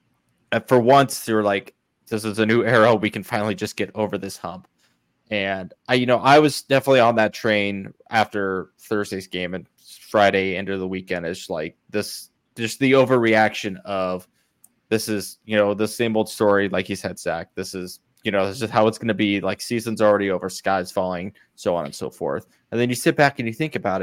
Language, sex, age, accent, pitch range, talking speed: English, male, 20-39, American, 100-120 Hz, 215 wpm